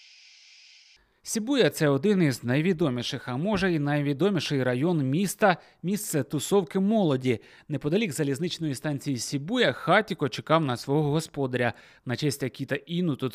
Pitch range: 135-185 Hz